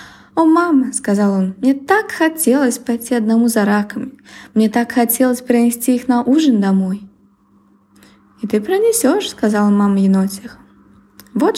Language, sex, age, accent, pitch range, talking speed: Ukrainian, female, 20-39, native, 180-255 Hz, 135 wpm